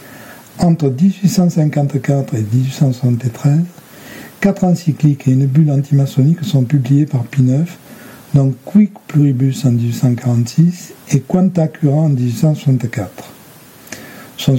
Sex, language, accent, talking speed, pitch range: male, French, French, 105 wpm, 130-165 Hz